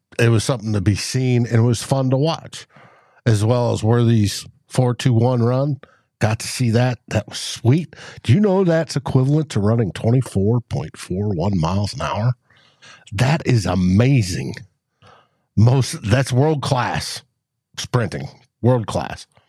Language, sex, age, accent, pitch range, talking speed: English, male, 60-79, American, 115-145 Hz, 140 wpm